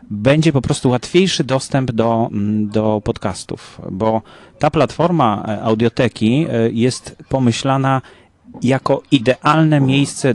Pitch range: 105-130 Hz